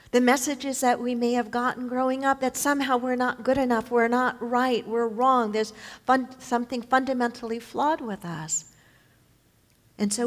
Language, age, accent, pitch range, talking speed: English, 50-69, American, 210-280 Hz, 165 wpm